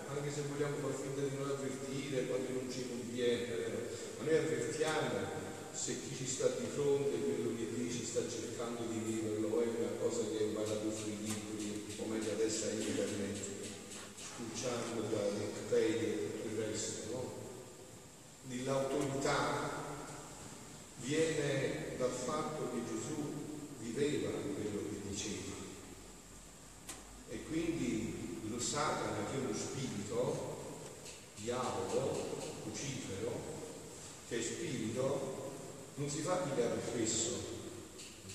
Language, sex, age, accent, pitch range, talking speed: Italian, male, 40-59, native, 110-155 Hz, 125 wpm